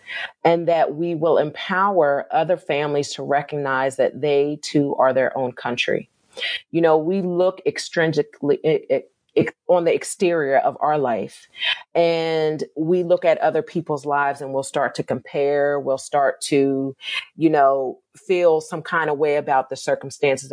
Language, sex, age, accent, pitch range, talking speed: English, female, 40-59, American, 140-170 Hz, 150 wpm